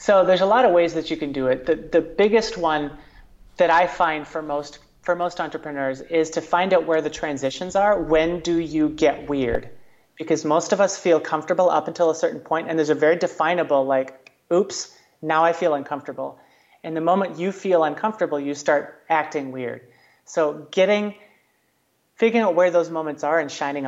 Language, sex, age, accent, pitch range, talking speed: English, male, 30-49, American, 145-170 Hz, 195 wpm